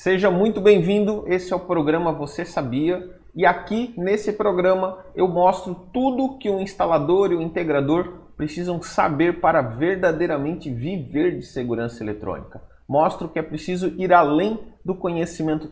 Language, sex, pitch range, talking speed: Portuguese, male, 150-185 Hz, 150 wpm